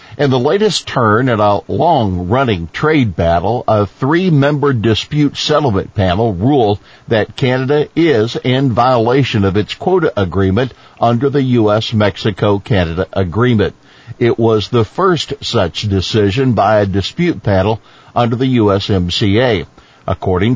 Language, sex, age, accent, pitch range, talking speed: English, male, 60-79, American, 100-130 Hz, 125 wpm